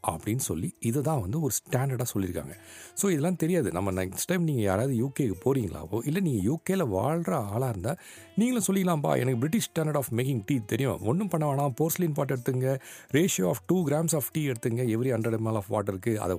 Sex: male